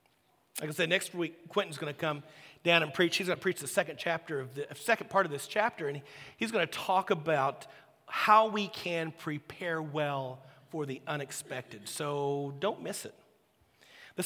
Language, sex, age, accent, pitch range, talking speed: English, male, 40-59, American, 145-185 Hz, 175 wpm